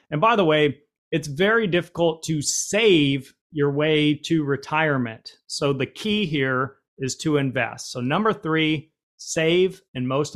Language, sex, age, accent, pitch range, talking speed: English, male, 30-49, American, 130-160 Hz, 150 wpm